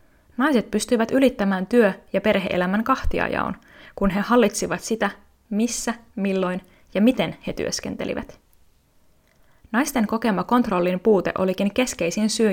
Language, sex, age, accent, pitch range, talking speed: Finnish, female, 20-39, native, 185-220 Hz, 115 wpm